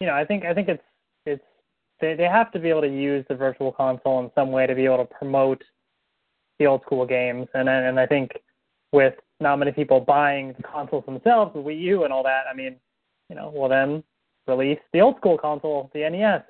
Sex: male